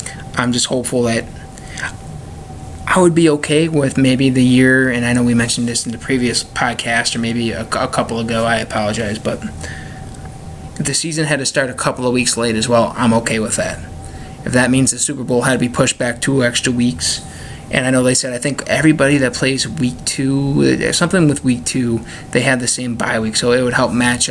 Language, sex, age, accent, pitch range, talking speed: English, male, 20-39, American, 115-130 Hz, 220 wpm